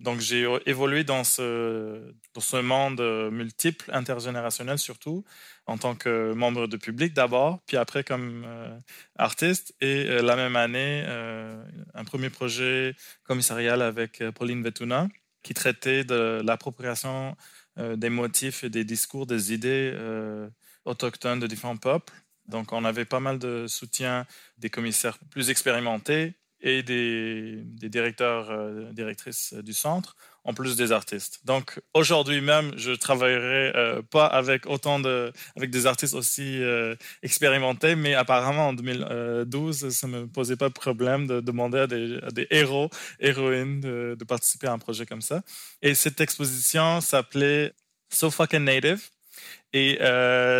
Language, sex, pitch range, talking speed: English, male, 120-140 Hz, 145 wpm